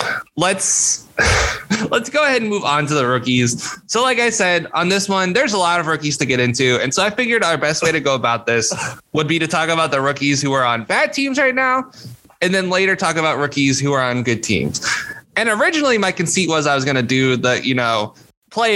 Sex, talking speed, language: male, 240 wpm, English